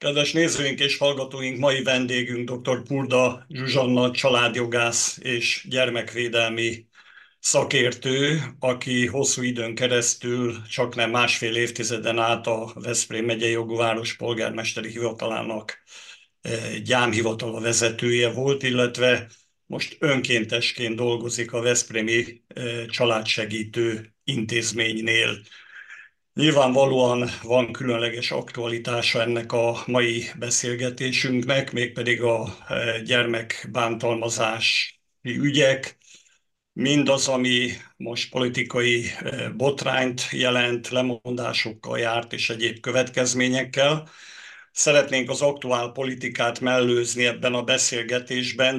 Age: 50-69